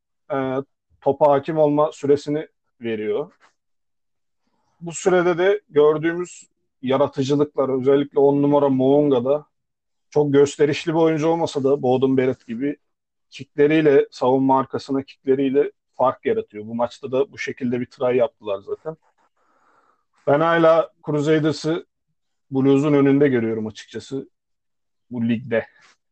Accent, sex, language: native, male, Turkish